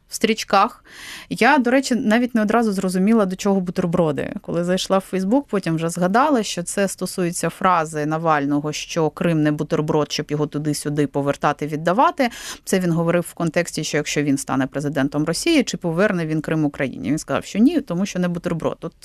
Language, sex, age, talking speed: Ukrainian, female, 30-49, 185 wpm